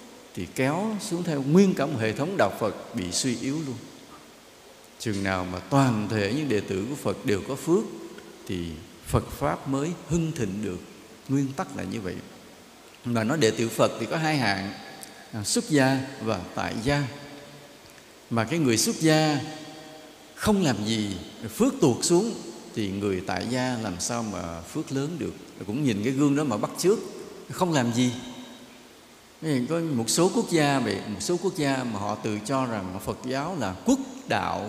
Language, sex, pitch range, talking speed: English, male, 105-150 Hz, 185 wpm